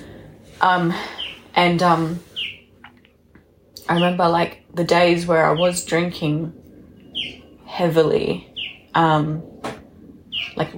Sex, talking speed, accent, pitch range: female, 85 wpm, Australian, 150-175 Hz